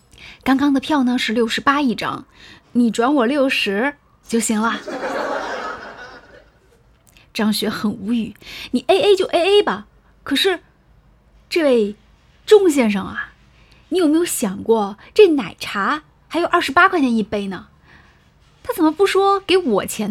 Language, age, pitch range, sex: Chinese, 20-39, 215-280 Hz, female